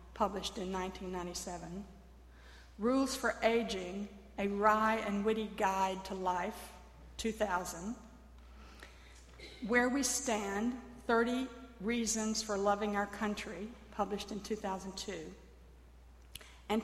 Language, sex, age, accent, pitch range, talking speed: English, female, 50-69, American, 185-225 Hz, 95 wpm